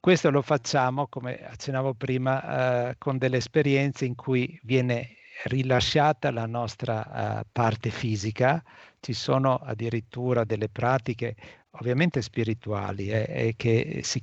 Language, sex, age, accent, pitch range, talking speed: Italian, male, 50-69, native, 110-135 Hz, 125 wpm